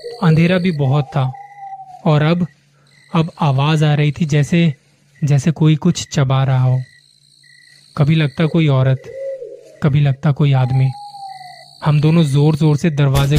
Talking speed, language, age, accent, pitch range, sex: 145 wpm, Hindi, 20-39, native, 145-175 Hz, male